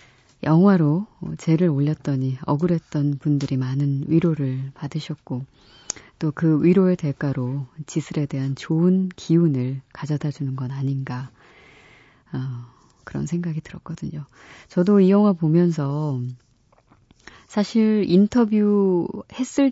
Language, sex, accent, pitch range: Korean, female, native, 140-175 Hz